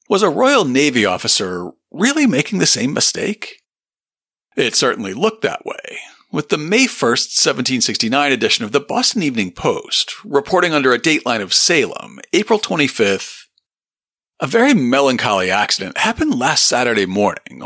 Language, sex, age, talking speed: English, male, 40-59, 145 wpm